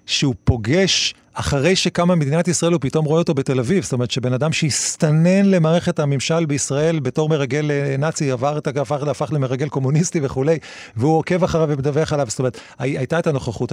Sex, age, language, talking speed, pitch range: male, 40-59, Hebrew, 175 wpm, 125-165 Hz